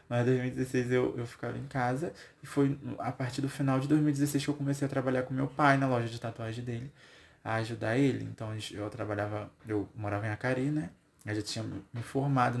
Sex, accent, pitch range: male, Brazilian, 115-140 Hz